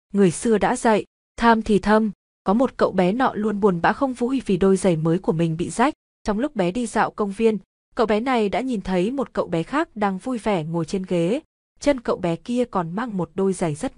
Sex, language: female, Vietnamese